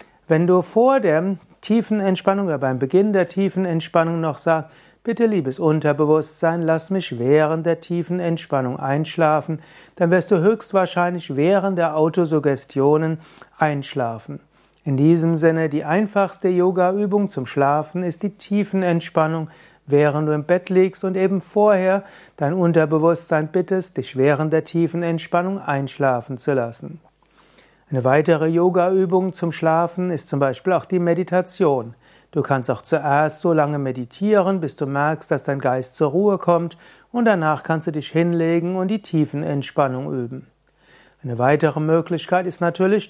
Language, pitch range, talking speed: German, 150-180 Hz, 145 wpm